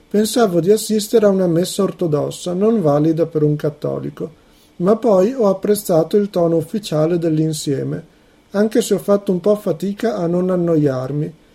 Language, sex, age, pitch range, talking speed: Italian, male, 50-69, 155-200 Hz, 155 wpm